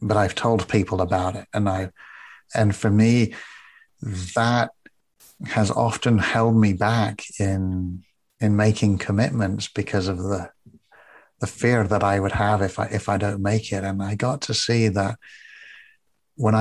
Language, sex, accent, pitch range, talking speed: English, male, British, 105-125 Hz, 160 wpm